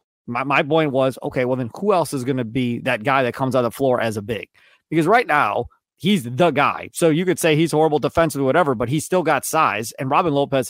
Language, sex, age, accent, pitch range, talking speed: English, male, 30-49, American, 135-175 Hz, 265 wpm